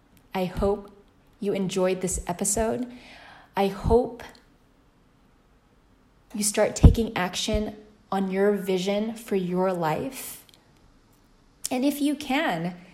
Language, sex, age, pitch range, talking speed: English, female, 20-39, 180-235 Hz, 100 wpm